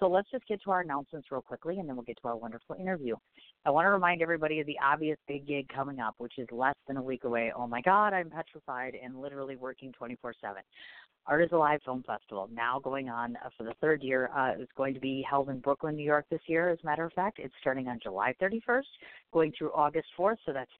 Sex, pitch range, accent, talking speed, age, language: female, 125-160 Hz, American, 245 wpm, 40-59, English